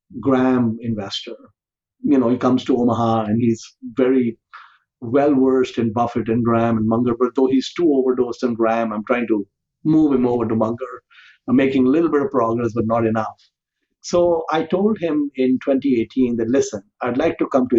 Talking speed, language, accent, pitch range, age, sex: 190 wpm, English, Indian, 115-135 Hz, 50-69, male